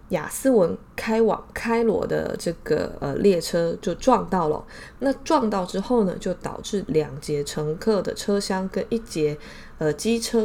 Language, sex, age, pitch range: Chinese, female, 20-39, 170-230 Hz